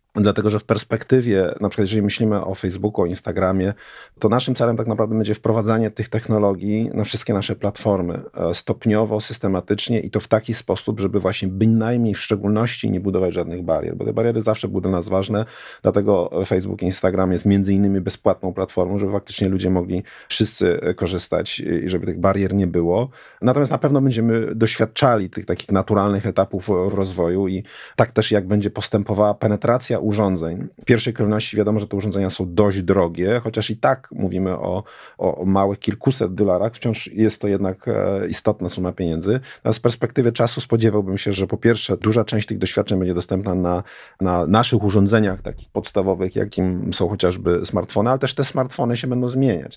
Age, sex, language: 30-49, male, Polish